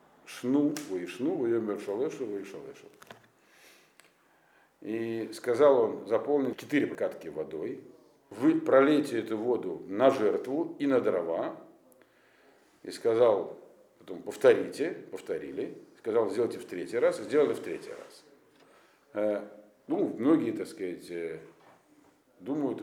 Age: 50-69